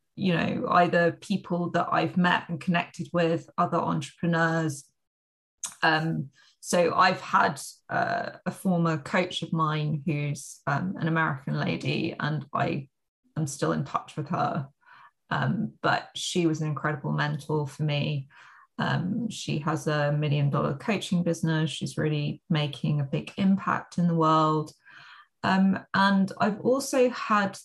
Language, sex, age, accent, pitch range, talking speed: English, female, 20-39, British, 160-190 Hz, 145 wpm